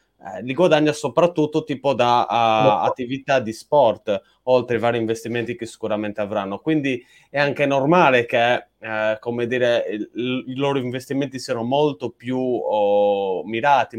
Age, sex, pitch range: 20-39, male, 110-140 Hz